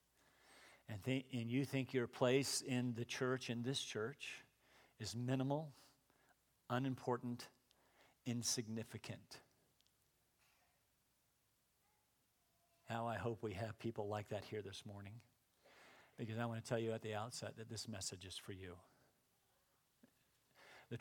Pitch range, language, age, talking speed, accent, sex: 115-145 Hz, English, 50-69, 125 wpm, American, male